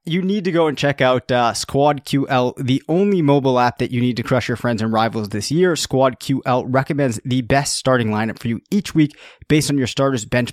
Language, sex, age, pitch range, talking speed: English, male, 20-39, 125-150 Hz, 220 wpm